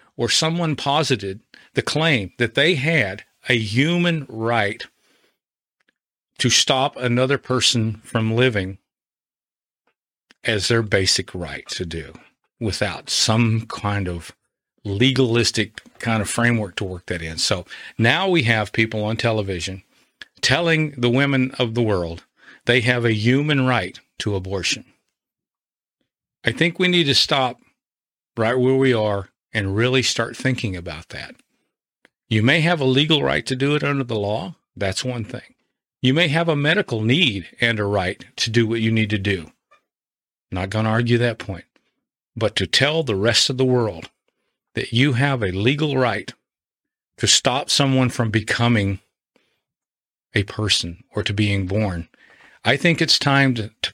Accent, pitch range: American, 100-130 Hz